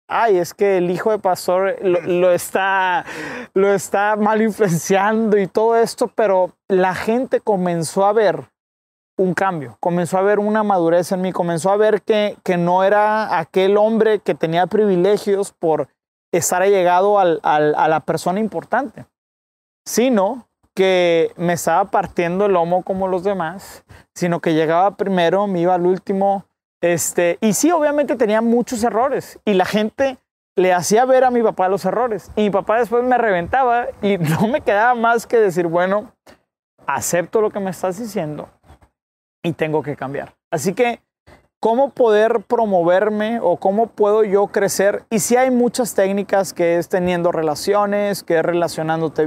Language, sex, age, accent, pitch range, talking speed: Spanish, male, 30-49, Mexican, 180-220 Hz, 165 wpm